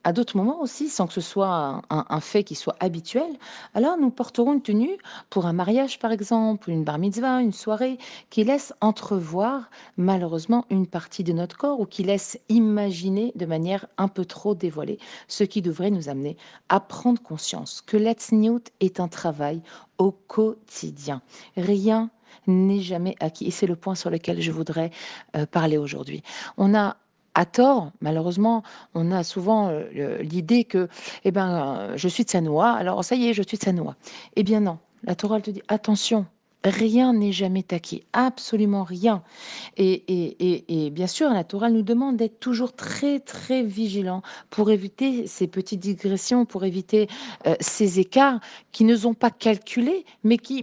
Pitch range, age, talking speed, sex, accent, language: 180-230 Hz, 40-59, 180 wpm, female, French, French